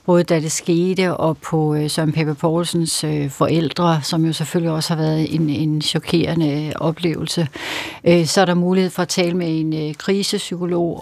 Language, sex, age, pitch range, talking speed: Danish, female, 60-79, 155-170 Hz, 165 wpm